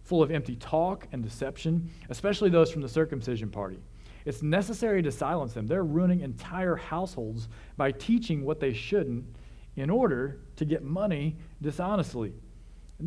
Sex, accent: male, American